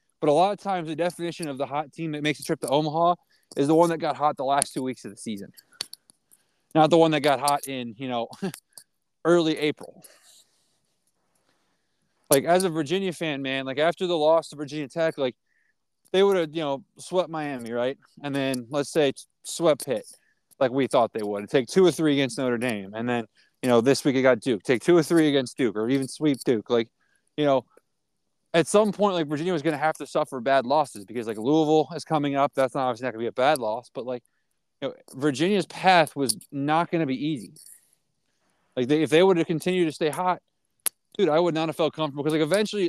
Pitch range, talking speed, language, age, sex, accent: 135-170 Hz, 230 wpm, English, 20-39, male, American